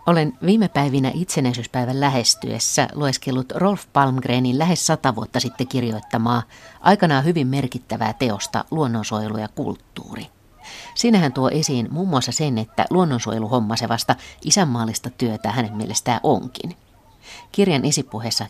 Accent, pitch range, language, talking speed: native, 110-140 Hz, Finnish, 115 wpm